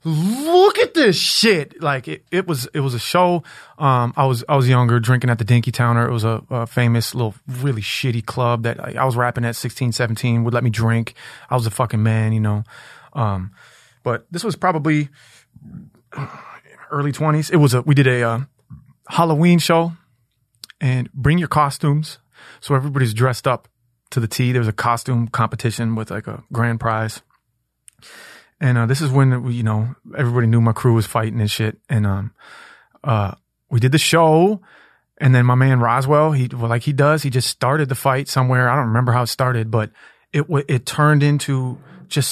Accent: American